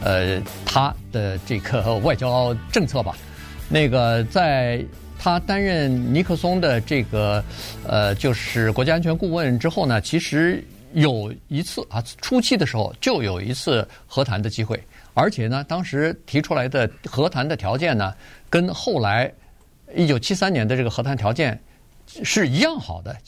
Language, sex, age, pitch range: Chinese, male, 50-69, 105-140 Hz